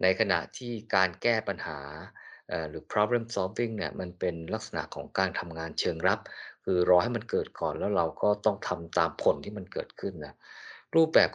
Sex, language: male, Thai